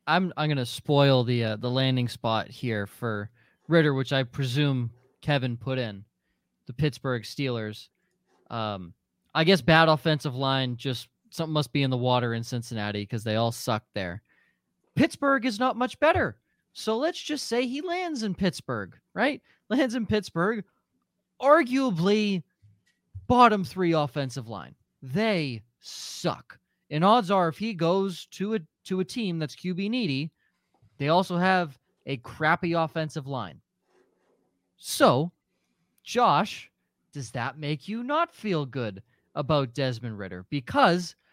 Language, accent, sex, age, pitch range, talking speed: English, American, male, 20-39, 125-205 Hz, 145 wpm